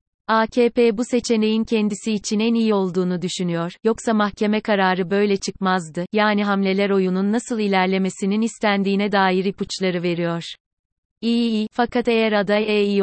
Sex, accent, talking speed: female, native, 135 wpm